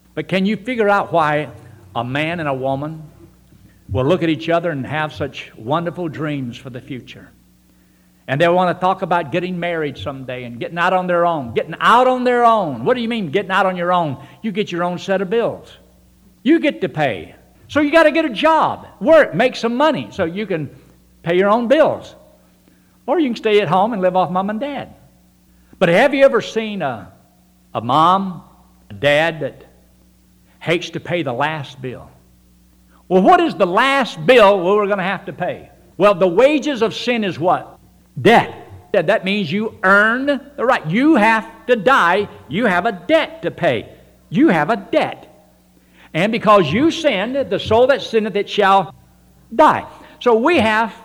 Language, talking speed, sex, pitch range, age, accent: English, 195 wpm, male, 135-225 Hz, 60-79, American